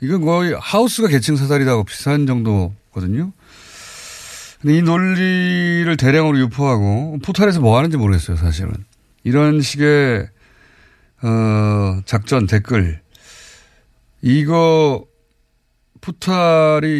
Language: Korean